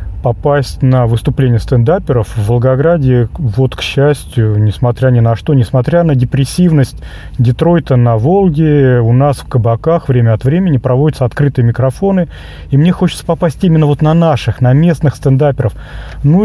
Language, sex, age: Russian, male, 30-49